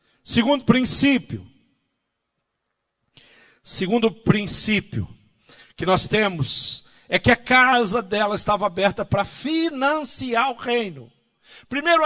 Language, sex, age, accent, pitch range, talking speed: Portuguese, male, 50-69, Brazilian, 115-195 Hz, 95 wpm